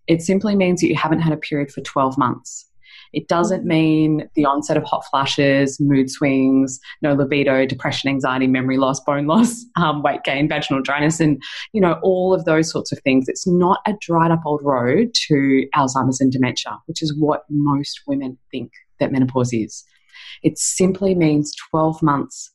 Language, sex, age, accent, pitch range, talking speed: English, female, 20-39, Australian, 145-200 Hz, 185 wpm